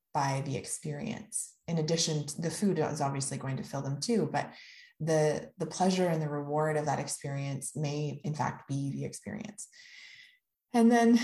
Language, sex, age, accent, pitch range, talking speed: English, female, 20-39, American, 150-185 Hz, 175 wpm